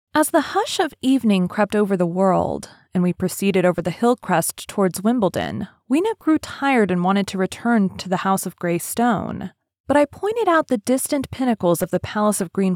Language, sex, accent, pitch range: English, female, American, 180-260 Hz